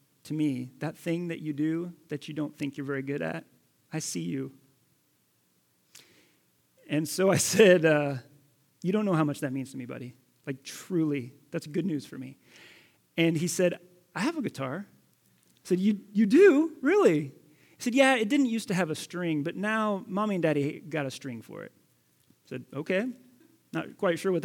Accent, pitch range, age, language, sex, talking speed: American, 145-180 Hz, 30-49, English, male, 195 wpm